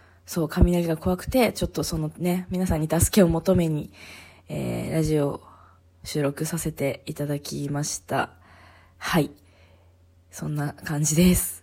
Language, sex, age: Japanese, female, 20-39